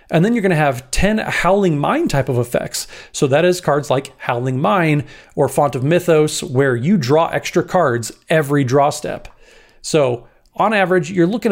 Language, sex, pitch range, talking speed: English, male, 130-170 Hz, 180 wpm